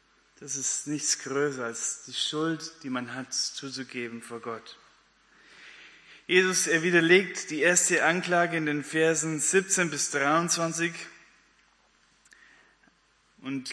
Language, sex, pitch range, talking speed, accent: German, male, 135-165 Hz, 115 wpm, German